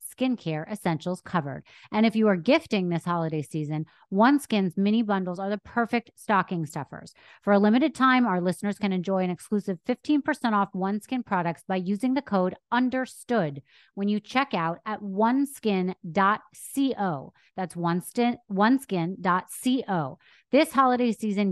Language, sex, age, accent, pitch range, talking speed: English, female, 30-49, American, 175-220 Hz, 140 wpm